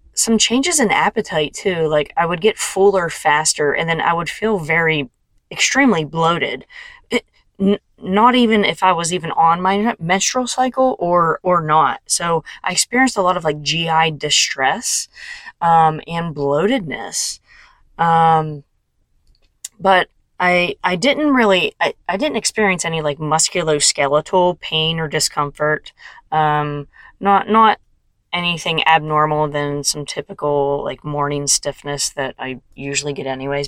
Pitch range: 150-195 Hz